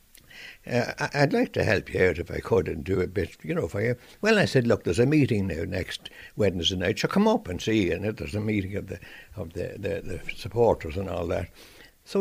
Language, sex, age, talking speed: English, male, 60-79, 240 wpm